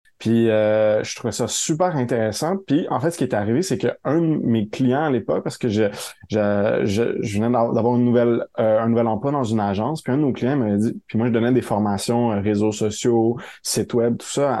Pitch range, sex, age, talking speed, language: 110-125 Hz, male, 20-39, 240 wpm, French